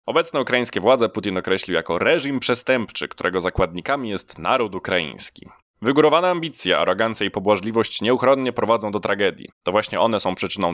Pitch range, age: 95-135 Hz, 20-39